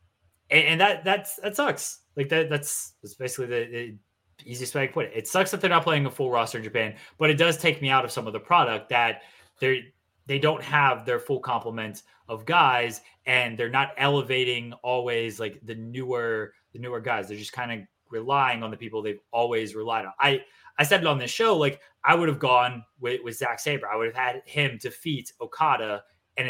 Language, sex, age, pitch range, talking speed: English, male, 20-39, 115-145 Hz, 220 wpm